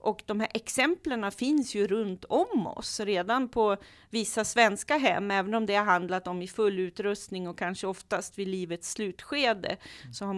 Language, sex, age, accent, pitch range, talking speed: Swedish, female, 40-59, native, 175-225 Hz, 180 wpm